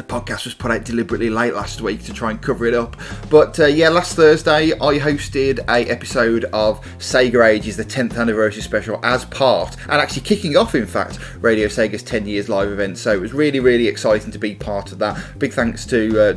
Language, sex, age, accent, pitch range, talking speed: English, male, 20-39, British, 110-140 Hz, 225 wpm